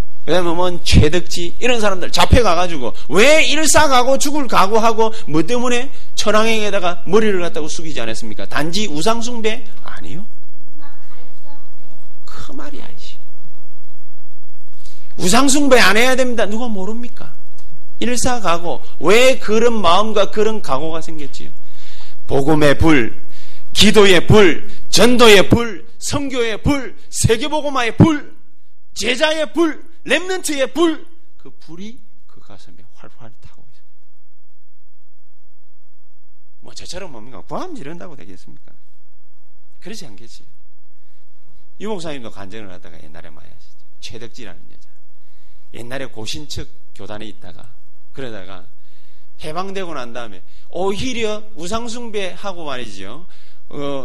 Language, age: Korean, 40-59